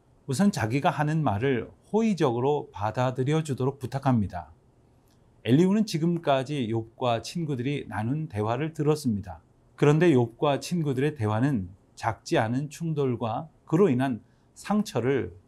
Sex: male